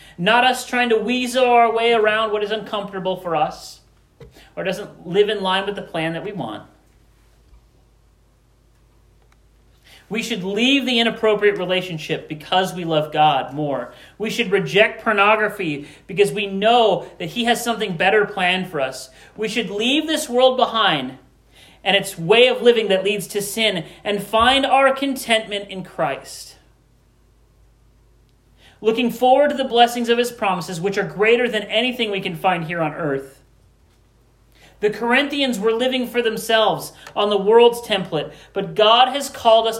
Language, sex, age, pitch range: English, male, 40-59, 140-220 Hz